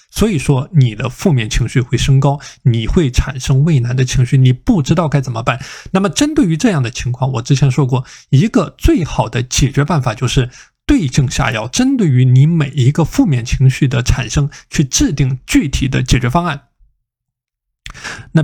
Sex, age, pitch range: male, 20-39, 130-165 Hz